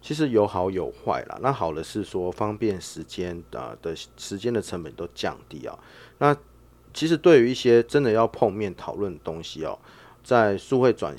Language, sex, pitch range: Chinese, male, 90-115 Hz